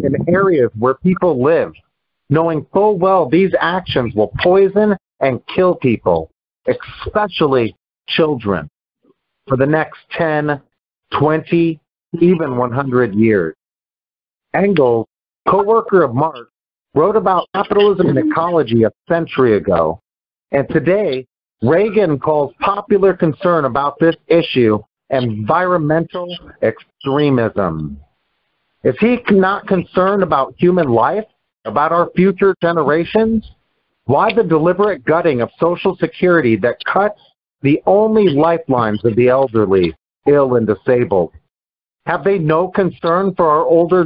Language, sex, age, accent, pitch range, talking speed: English, male, 50-69, American, 130-190 Hz, 115 wpm